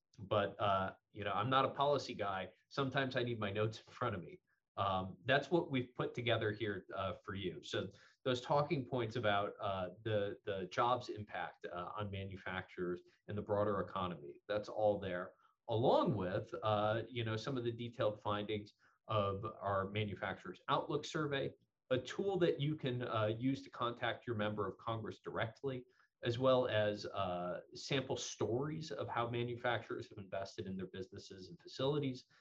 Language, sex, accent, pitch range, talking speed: English, male, American, 105-135 Hz, 170 wpm